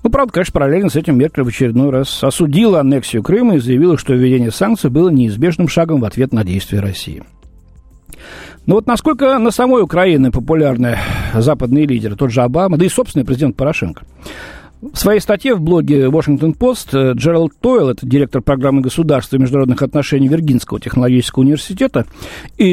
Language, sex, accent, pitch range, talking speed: Russian, male, native, 125-175 Hz, 165 wpm